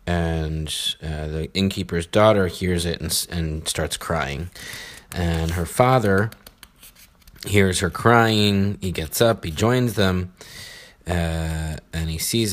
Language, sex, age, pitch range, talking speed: English, male, 30-49, 85-100 Hz, 130 wpm